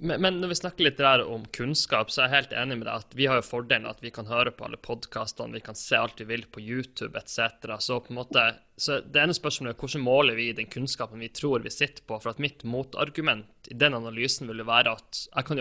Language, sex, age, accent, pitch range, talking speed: English, male, 20-39, Swedish, 115-140 Hz, 260 wpm